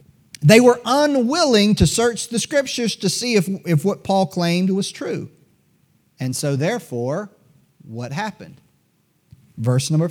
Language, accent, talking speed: English, American, 135 wpm